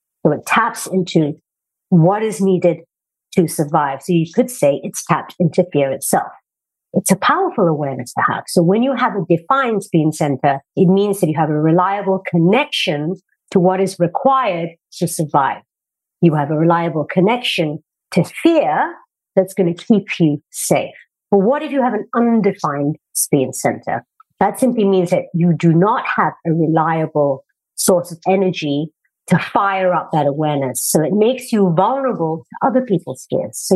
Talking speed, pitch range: 170 wpm, 165-220 Hz